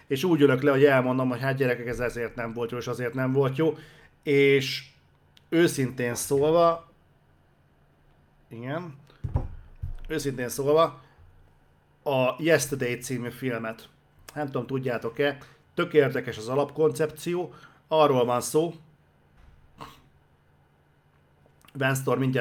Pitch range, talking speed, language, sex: 120-150 Hz, 105 wpm, Hungarian, male